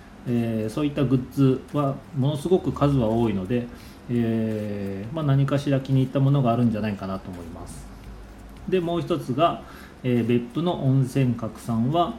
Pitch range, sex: 105-140 Hz, male